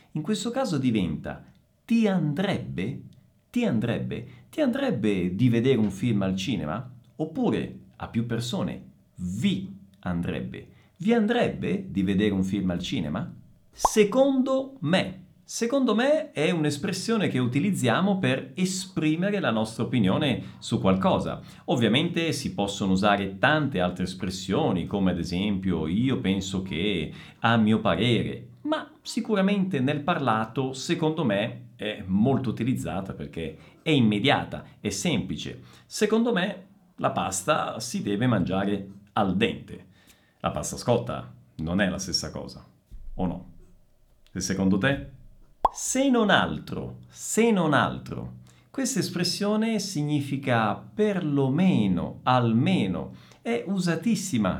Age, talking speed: 50-69, 120 wpm